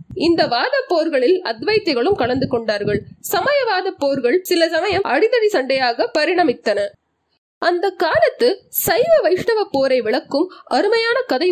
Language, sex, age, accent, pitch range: Tamil, female, 20-39, native, 250-385 Hz